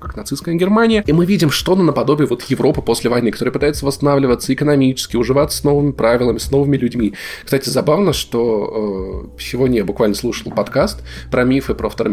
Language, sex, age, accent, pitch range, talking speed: Russian, male, 20-39, native, 110-145 Hz, 180 wpm